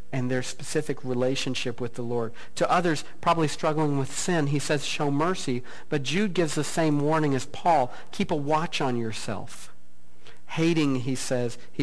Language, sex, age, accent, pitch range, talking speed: English, male, 50-69, American, 115-160 Hz, 170 wpm